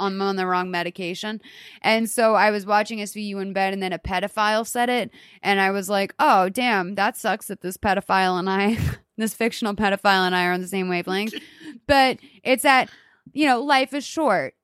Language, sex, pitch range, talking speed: English, female, 195-240 Hz, 200 wpm